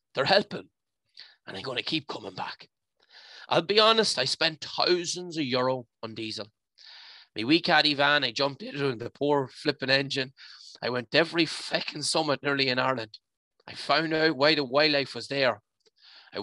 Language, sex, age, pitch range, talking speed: English, male, 30-49, 125-160 Hz, 175 wpm